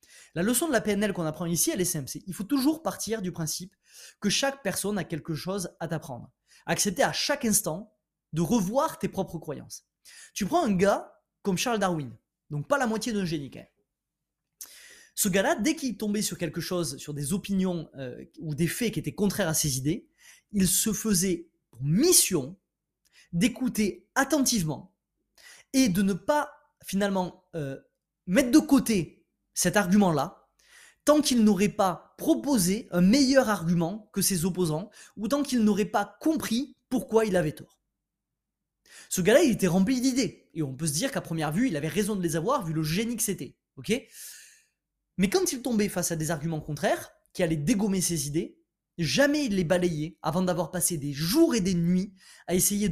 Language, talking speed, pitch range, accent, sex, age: French, 185 wpm, 170-230 Hz, French, male, 20-39